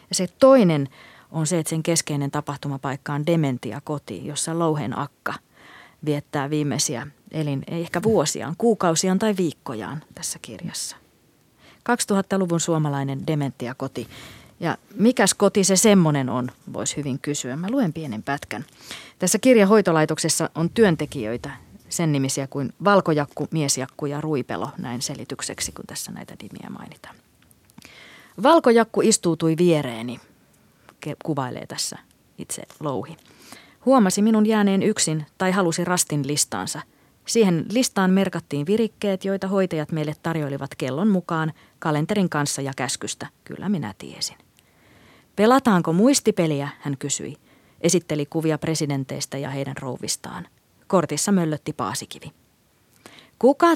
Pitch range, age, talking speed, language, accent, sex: 140-190 Hz, 30-49, 115 wpm, Finnish, native, female